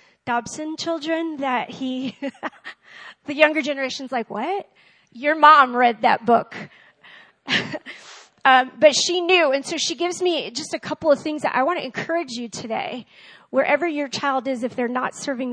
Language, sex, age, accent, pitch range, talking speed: English, female, 40-59, American, 235-300 Hz, 165 wpm